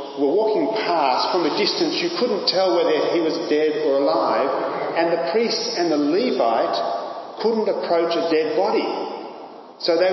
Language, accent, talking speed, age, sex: English, Australian, 165 wpm, 40-59, male